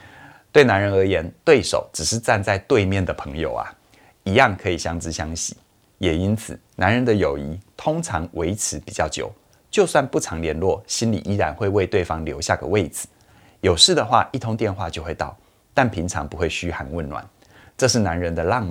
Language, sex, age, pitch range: Chinese, male, 30-49, 85-110 Hz